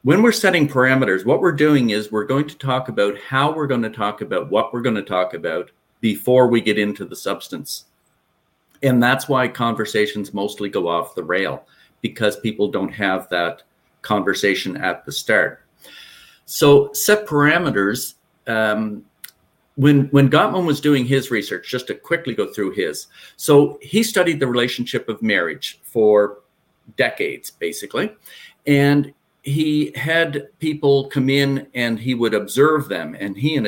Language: English